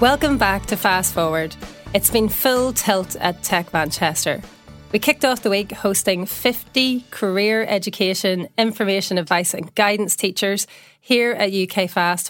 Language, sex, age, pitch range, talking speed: English, female, 30-49, 185-220 Hz, 145 wpm